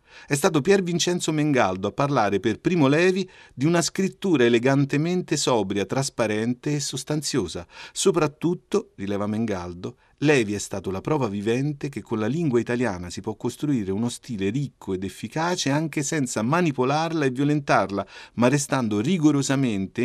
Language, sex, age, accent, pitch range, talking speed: Italian, male, 40-59, native, 110-155 Hz, 145 wpm